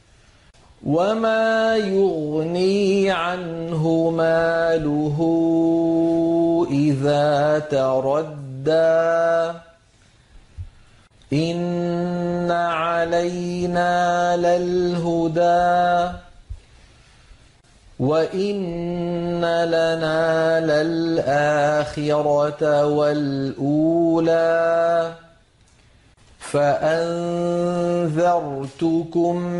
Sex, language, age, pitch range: male, Arabic, 40-59, 150-175 Hz